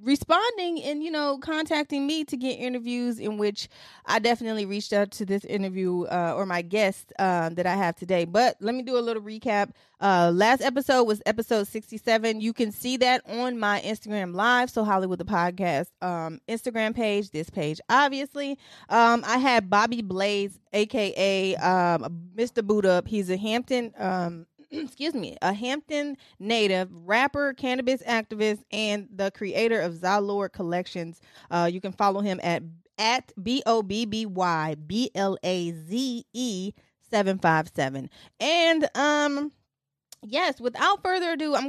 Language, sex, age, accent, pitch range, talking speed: English, female, 20-39, American, 190-255 Hz, 145 wpm